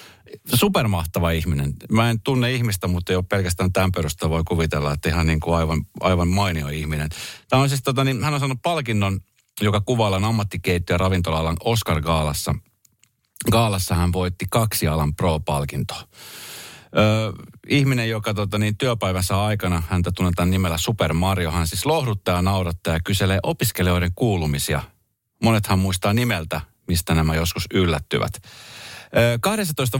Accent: native